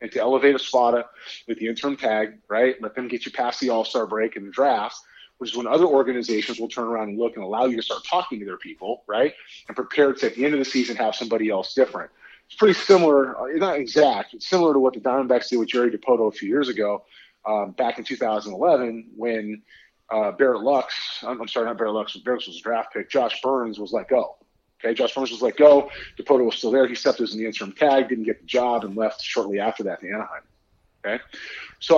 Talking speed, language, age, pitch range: 240 wpm, English, 30-49, 115-145 Hz